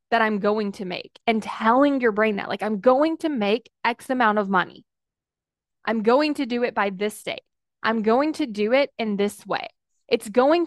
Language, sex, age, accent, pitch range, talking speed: English, female, 20-39, American, 210-290 Hz, 210 wpm